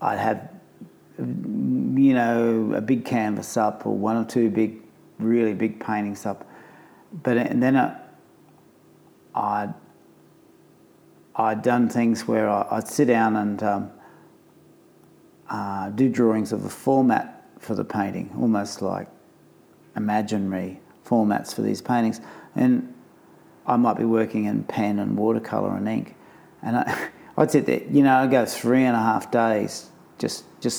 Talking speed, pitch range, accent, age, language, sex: 140 wpm, 105-120 Hz, Australian, 50-69, English, male